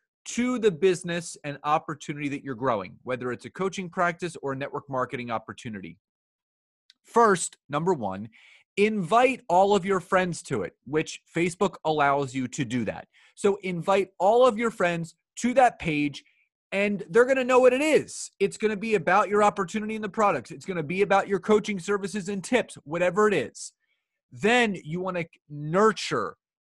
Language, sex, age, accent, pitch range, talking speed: English, male, 30-49, American, 150-210 Hz, 170 wpm